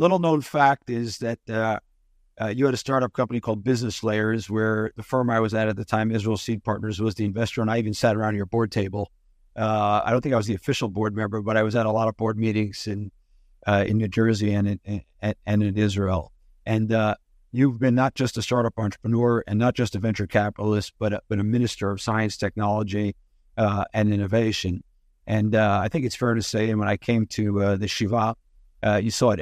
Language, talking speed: English, 235 wpm